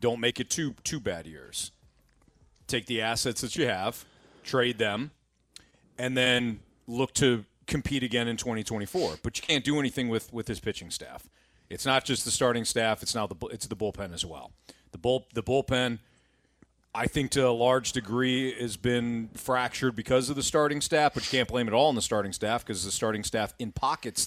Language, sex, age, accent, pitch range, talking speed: English, male, 40-59, American, 110-155 Hz, 205 wpm